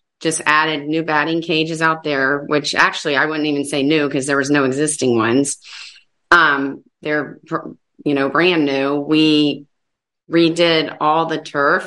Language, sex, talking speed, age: English, female, 155 wpm, 30-49